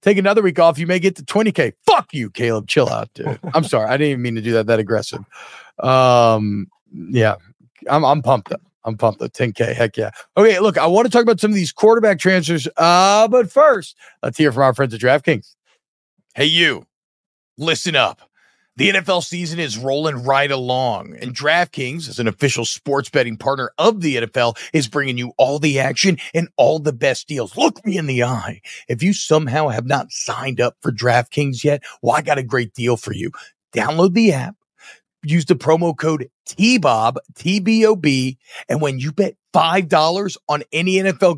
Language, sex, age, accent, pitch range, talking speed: English, male, 40-59, American, 130-190 Hz, 190 wpm